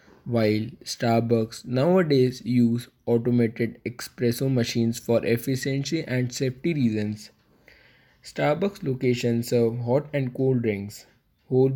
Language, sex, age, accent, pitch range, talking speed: English, male, 20-39, Indian, 115-135 Hz, 100 wpm